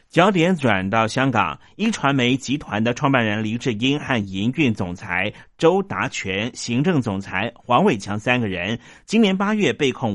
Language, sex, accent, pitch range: Chinese, male, native, 105-140 Hz